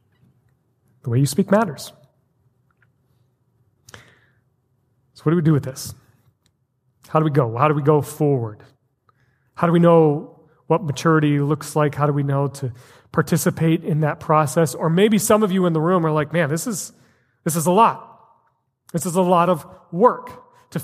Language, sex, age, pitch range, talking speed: English, male, 30-49, 150-215 Hz, 180 wpm